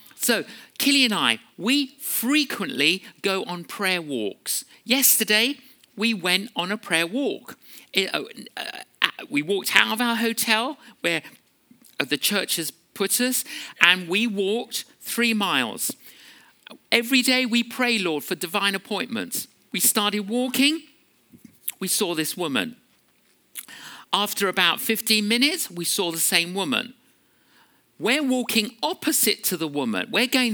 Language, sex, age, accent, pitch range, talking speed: English, male, 50-69, British, 180-255 Hz, 135 wpm